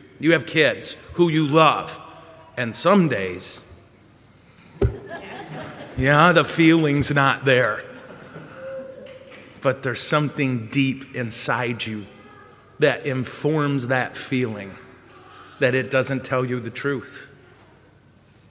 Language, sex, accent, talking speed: English, male, American, 100 wpm